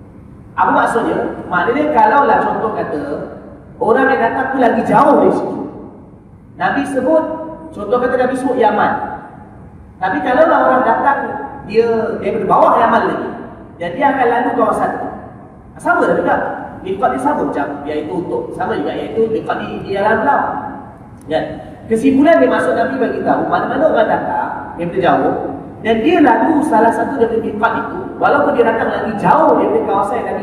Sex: male